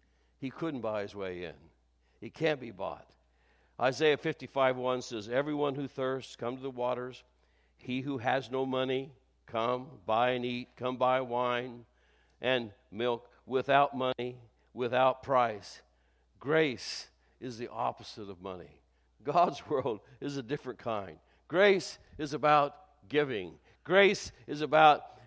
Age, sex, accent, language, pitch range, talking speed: 60-79, male, American, English, 100-150 Hz, 135 wpm